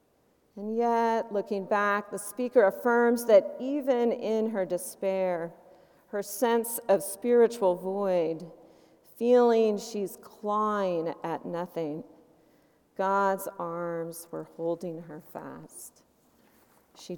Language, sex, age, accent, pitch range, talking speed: English, female, 40-59, American, 170-215 Hz, 100 wpm